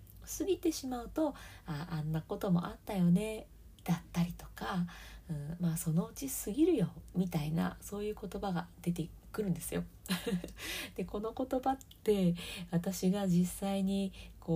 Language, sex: Japanese, female